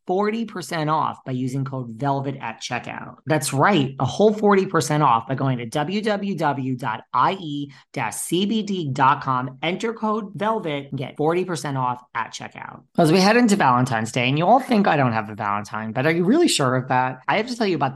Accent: American